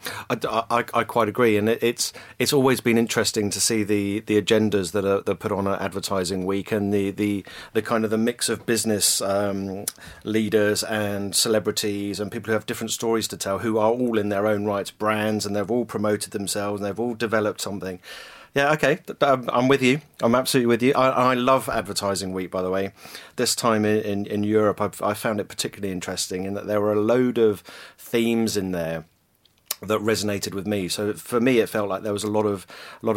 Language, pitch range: English, 100-115 Hz